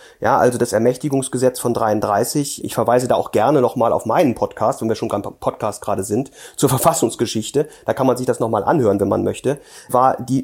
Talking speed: 205 wpm